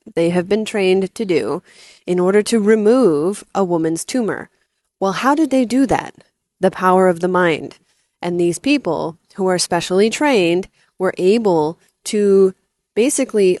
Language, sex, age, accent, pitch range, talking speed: English, female, 20-39, American, 170-210 Hz, 155 wpm